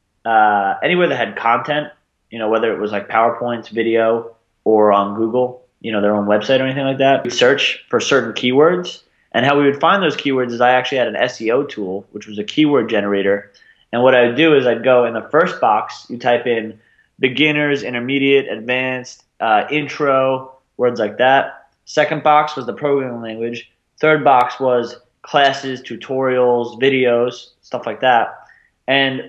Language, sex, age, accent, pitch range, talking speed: English, male, 20-39, American, 115-140 Hz, 180 wpm